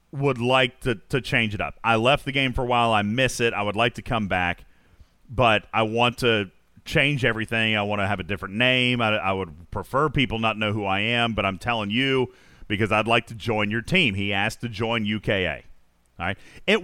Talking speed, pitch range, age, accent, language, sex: 225 wpm, 115-180 Hz, 40-59, American, English, male